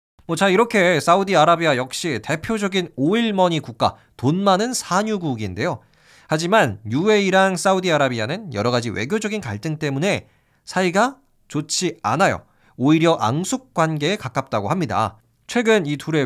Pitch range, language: 125-175 Hz, Korean